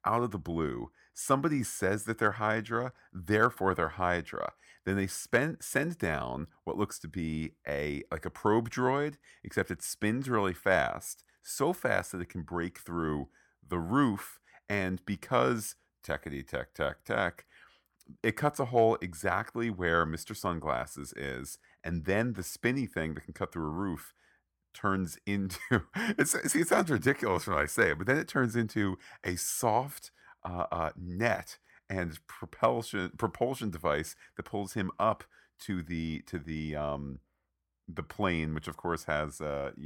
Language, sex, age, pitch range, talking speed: English, male, 40-59, 75-105 Hz, 160 wpm